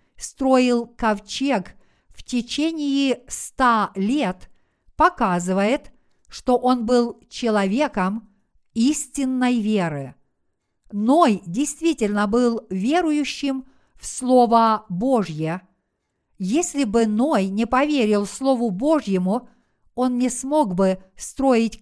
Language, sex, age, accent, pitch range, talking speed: Russian, female, 50-69, native, 210-265 Hz, 90 wpm